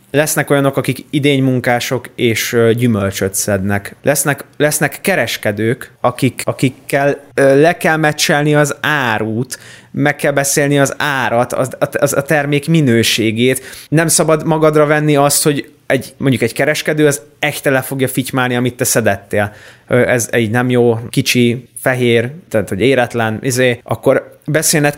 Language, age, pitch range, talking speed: Hungarian, 20-39, 115-140 Hz, 140 wpm